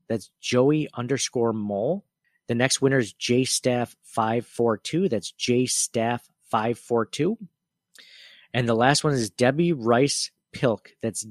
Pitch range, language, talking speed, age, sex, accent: 115-135 Hz, English, 150 wpm, 40-59, male, American